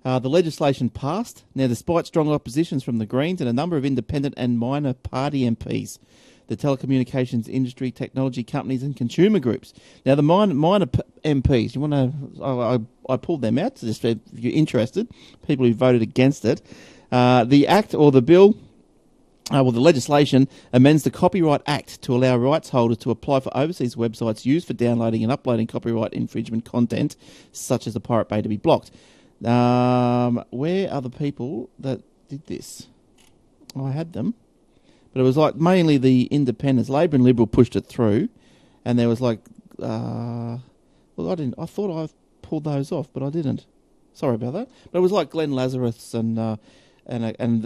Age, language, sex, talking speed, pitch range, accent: 40-59, English, male, 185 wpm, 120-145 Hz, Australian